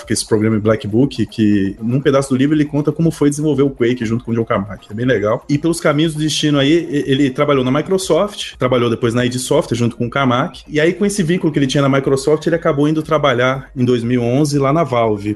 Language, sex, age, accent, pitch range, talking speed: Portuguese, male, 20-39, Brazilian, 120-150 Hz, 245 wpm